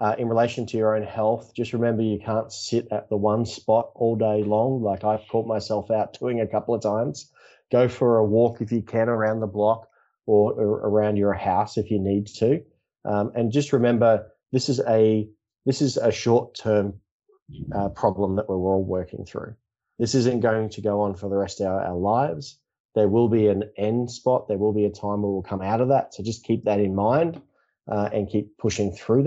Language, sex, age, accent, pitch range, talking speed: English, male, 20-39, Australian, 105-120 Hz, 220 wpm